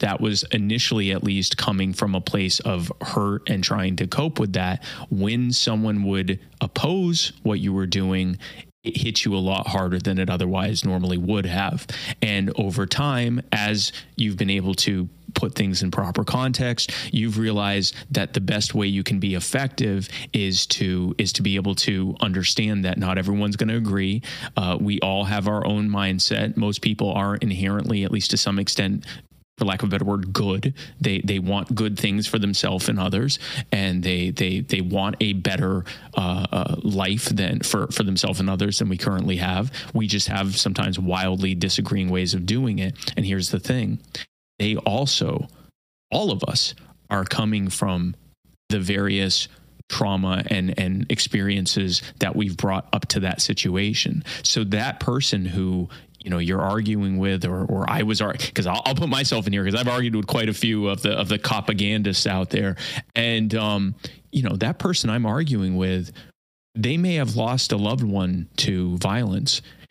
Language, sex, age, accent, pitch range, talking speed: English, male, 20-39, American, 95-115 Hz, 180 wpm